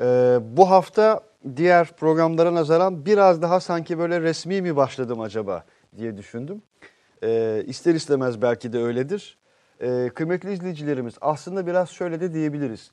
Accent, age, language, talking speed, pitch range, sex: native, 40-59, Turkish, 140 wpm, 115-165 Hz, male